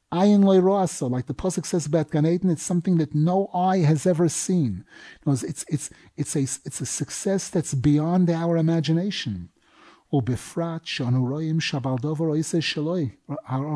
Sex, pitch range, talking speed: male, 140-170 Hz, 115 wpm